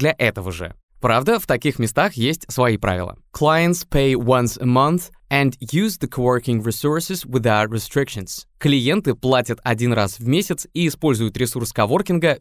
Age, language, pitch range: 20-39, Russian, 115-150 Hz